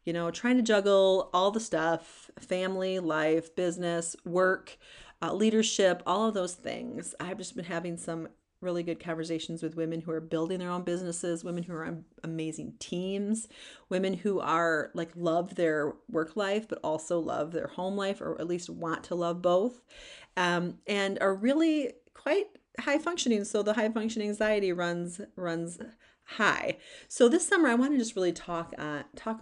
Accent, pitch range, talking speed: American, 165-215 Hz, 175 wpm